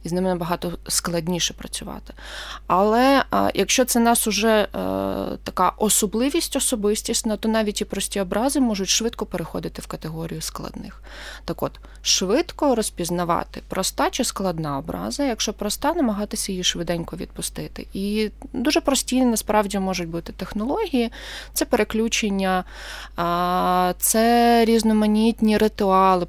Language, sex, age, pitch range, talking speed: Ukrainian, female, 20-39, 180-235 Hz, 120 wpm